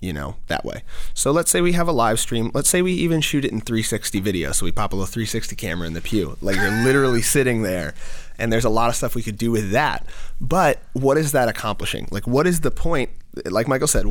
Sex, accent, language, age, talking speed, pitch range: male, American, English, 30-49, 255 wpm, 95-125 Hz